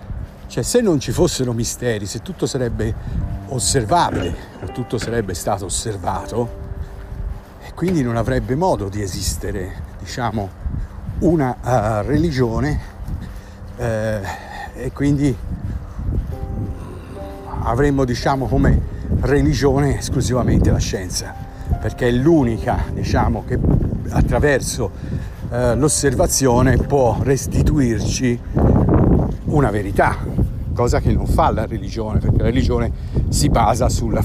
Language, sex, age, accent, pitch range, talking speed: Italian, male, 50-69, native, 100-130 Hz, 105 wpm